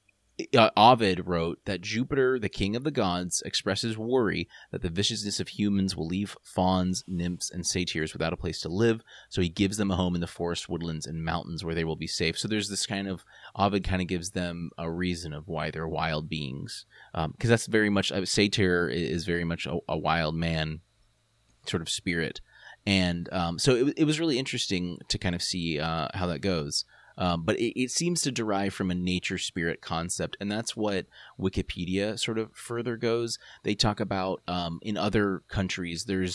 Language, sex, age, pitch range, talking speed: English, male, 30-49, 85-105 Hz, 200 wpm